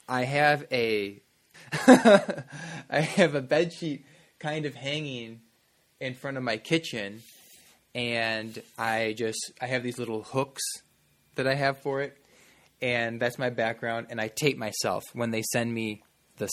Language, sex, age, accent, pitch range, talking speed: English, male, 20-39, American, 115-150 Hz, 155 wpm